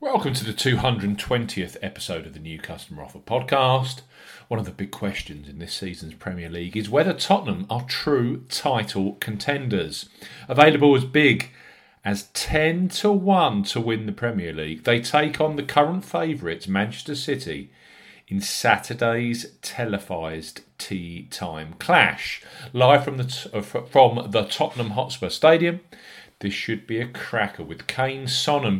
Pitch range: 100-130 Hz